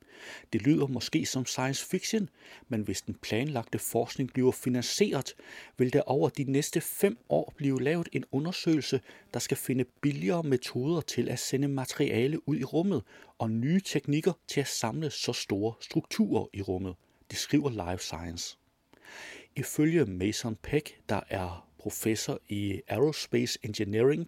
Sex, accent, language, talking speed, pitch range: male, native, Danish, 150 wpm, 110-150 Hz